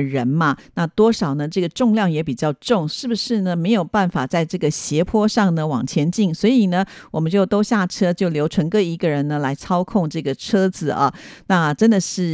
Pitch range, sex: 155-205 Hz, female